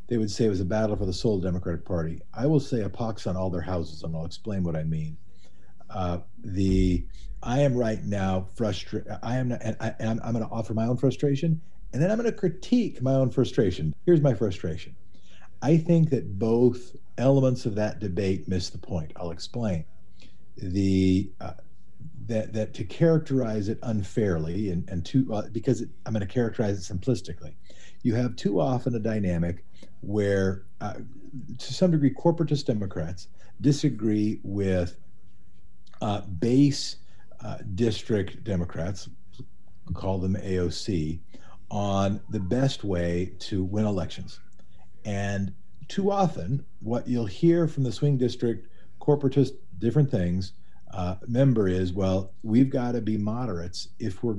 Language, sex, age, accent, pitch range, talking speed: English, male, 50-69, American, 95-120 Hz, 160 wpm